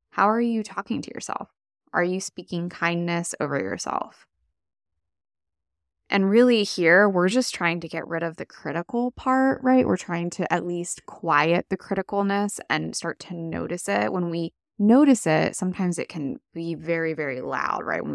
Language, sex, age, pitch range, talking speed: English, female, 10-29, 160-200 Hz, 170 wpm